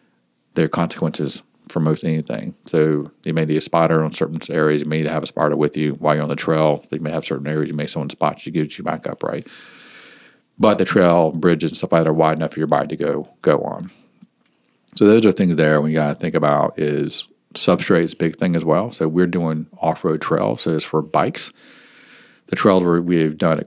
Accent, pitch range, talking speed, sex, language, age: American, 75-90 Hz, 240 wpm, male, English, 40-59